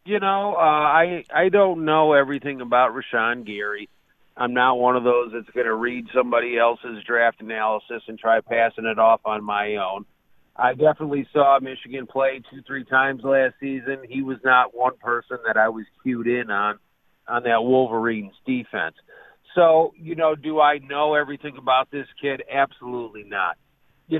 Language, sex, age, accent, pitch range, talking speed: English, male, 50-69, American, 125-155 Hz, 175 wpm